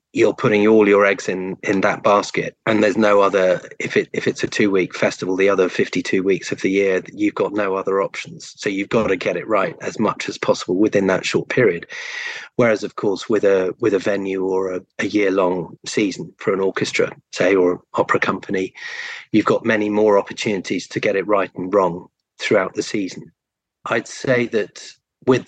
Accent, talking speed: British, 205 wpm